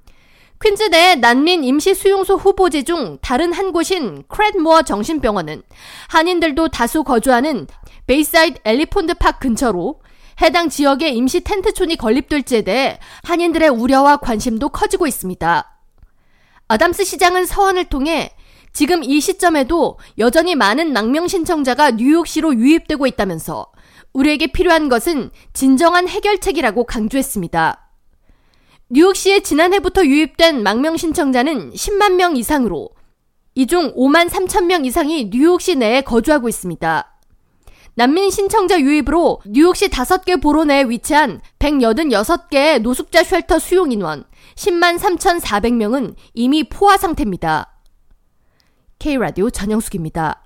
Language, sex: Korean, female